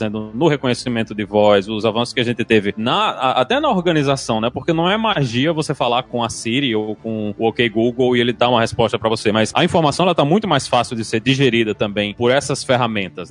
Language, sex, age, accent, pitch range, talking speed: Portuguese, male, 20-39, Brazilian, 125-160 Hz, 230 wpm